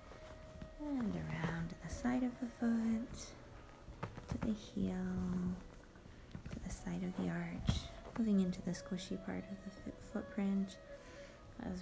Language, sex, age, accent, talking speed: English, female, 30-49, American, 135 wpm